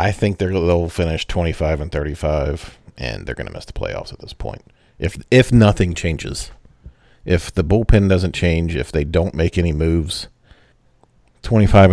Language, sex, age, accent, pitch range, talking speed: English, male, 40-59, American, 80-100 Hz, 170 wpm